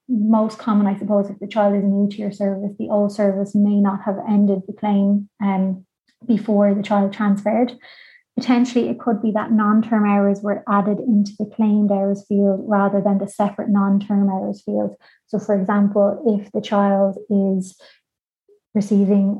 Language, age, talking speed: English, 20-39, 175 wpm